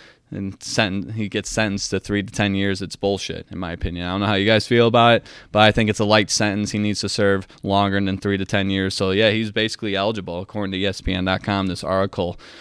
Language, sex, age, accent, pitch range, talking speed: English, male, 20-39, American, 95-105 Hz, 245 wpm